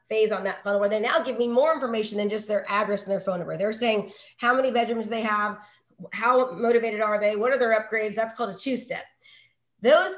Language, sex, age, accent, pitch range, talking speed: English, female, 30-49, American, 205-245 Hz, 230 wpm